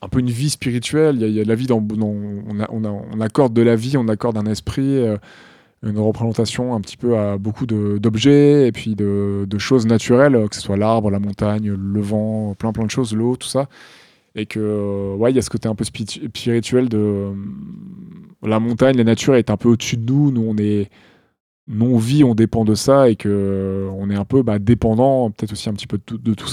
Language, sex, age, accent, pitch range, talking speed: French, male, 20-39, French, 105-125 Hz, 245 wpm